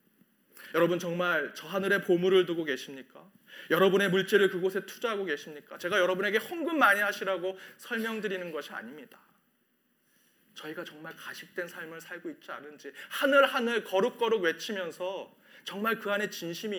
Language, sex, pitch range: Korean, male, 170-220 Hz